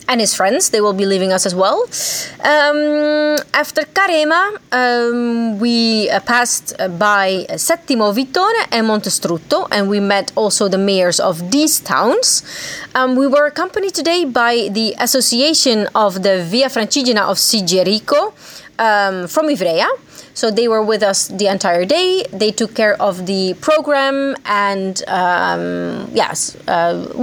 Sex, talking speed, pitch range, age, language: female, 140 wpm, 200-275 Hz, 30-49, Italian